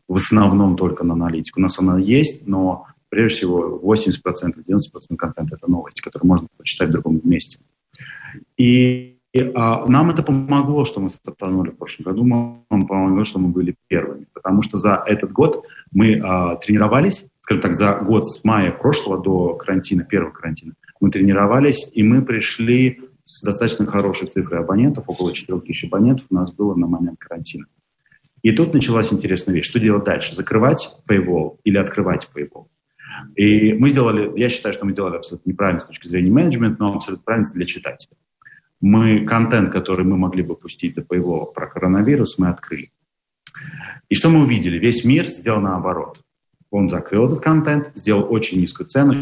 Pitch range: 90-115 Hz